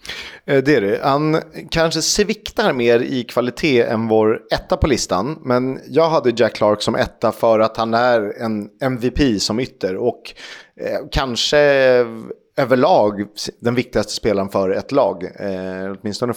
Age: 30-49